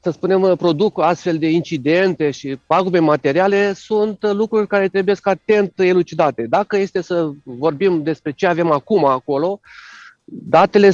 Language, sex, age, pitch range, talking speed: Romanian, male, 40-59, 165-205 Hz, 135 wpm